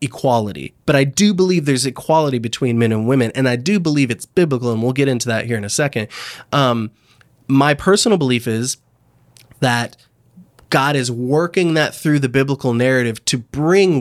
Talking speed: 180 wpm